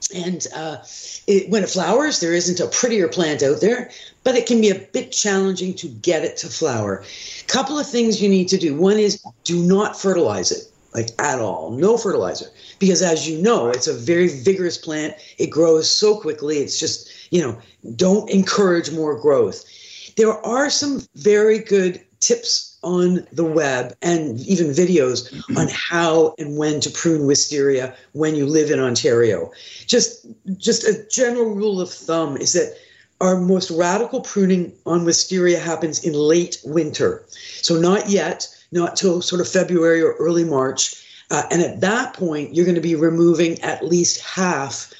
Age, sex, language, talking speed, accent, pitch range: 50-69, female, English, 175 wpm, American, 160-215 Hz